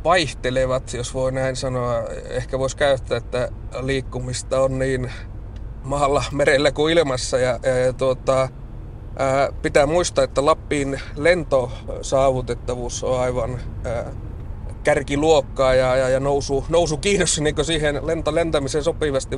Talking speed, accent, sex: 125 wpm, native, male